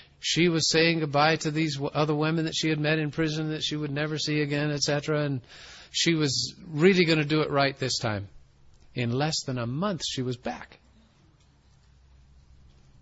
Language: English